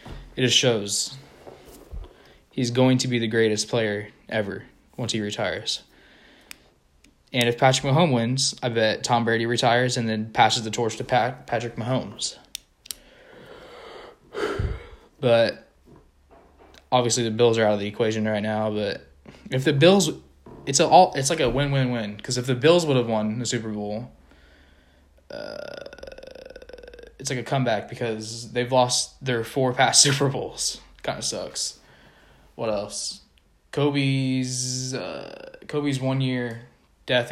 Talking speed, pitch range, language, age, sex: 145 wpm, 110-135 Hz, English, 20-39, male